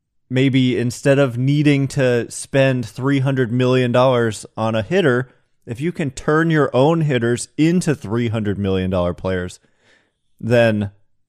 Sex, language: male, English